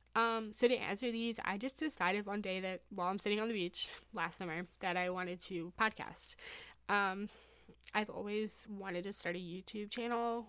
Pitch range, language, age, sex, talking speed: 180-220 Hz, English, 20-39, female, 190 wpm